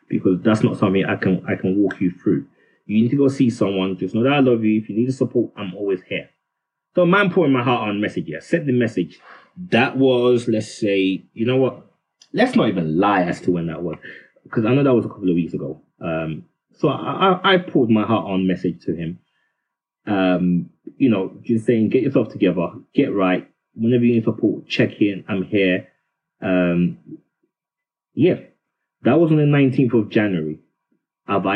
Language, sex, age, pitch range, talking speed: English, male, 20-39, 100-135 Hz, 205 wpm